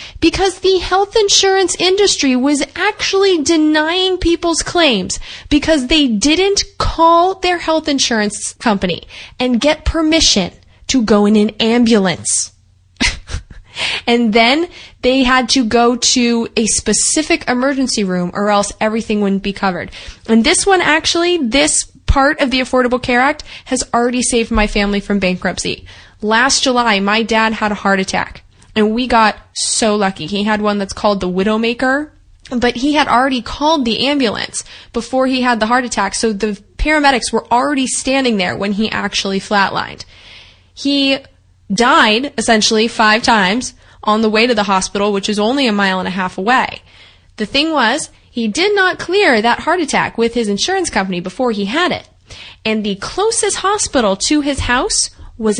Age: 20-39